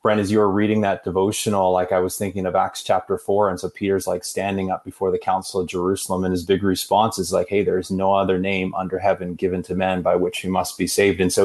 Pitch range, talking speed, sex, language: 95-105 Hz, 265 wpm, male, English